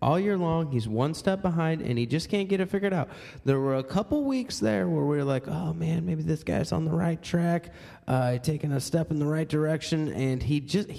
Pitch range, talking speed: 125-175 Hz, 245 wpm